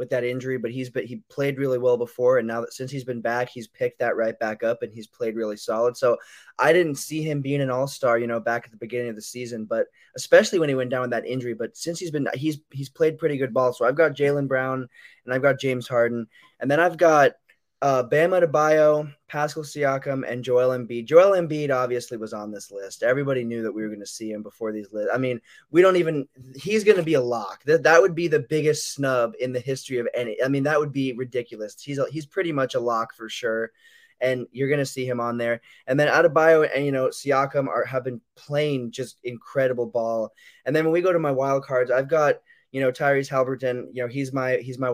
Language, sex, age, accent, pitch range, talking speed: English, male, 20-39, American, 120-150 Hz, 245 wpm